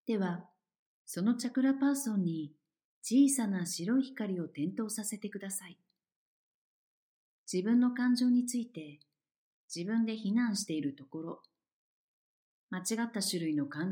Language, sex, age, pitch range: Japanese, female, 50-69, 155-215 Hz